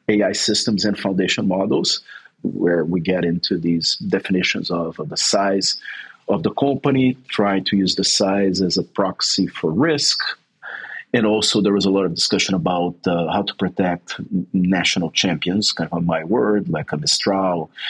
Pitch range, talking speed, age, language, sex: 95-125 Hz, 170 wpm, 40-59, English, male